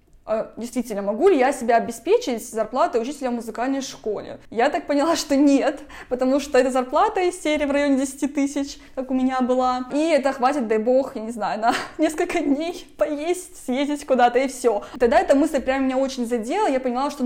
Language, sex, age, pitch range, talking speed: Russian, female, 20-39, 240-295 Hz, 195 wpm